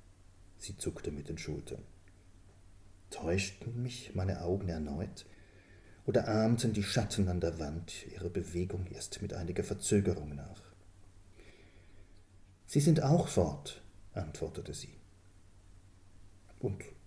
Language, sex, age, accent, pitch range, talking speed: German, male, 40-59, German, 90-100 Hz, 110 wpm